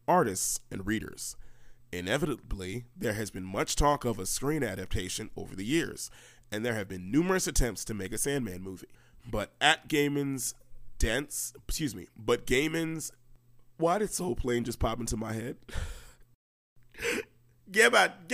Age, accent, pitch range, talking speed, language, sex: 30-49, American, 110-155 Hz, 145 wpm, English, male